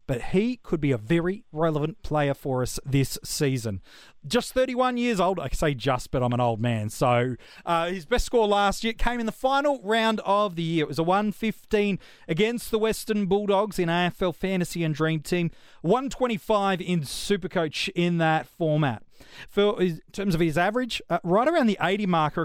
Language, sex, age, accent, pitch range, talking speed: English, male, 30-49, Australian, 160-220 Hz, 185 wpm